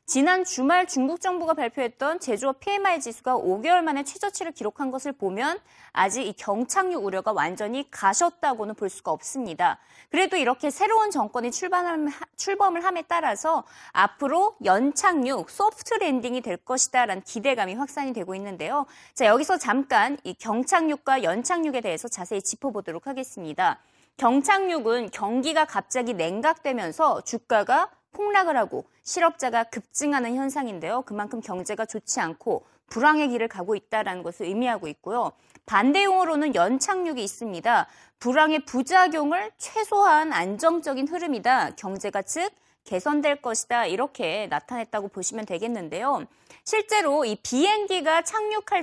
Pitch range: 220-335 Hz